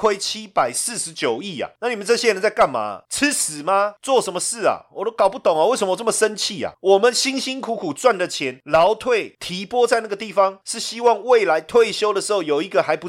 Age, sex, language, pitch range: 30-49, male, Chinese, 160-235 Hz